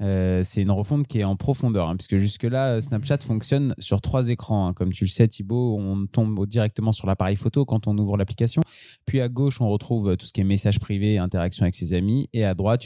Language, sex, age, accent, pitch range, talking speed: French, male, 20-39, French, 100-125 Hz, 240 wpm